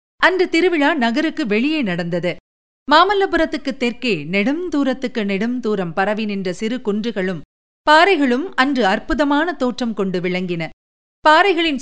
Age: 50-69